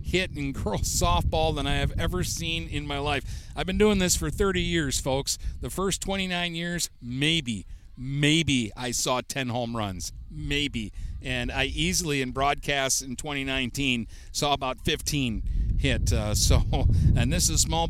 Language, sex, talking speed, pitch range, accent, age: English, male, 170 wpm, 120-145 Hz, American, 50-69